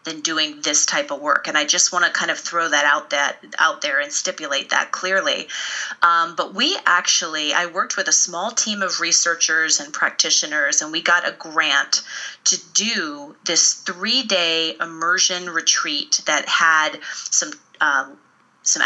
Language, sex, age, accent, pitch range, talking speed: English, female, 30-49, American, 165-205 Hz, 170 wpm